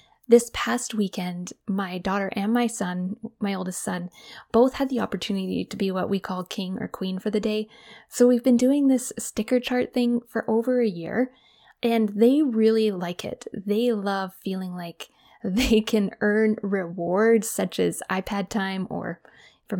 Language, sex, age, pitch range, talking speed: English, female, 20-39, 190-235 Hz, 175 wpm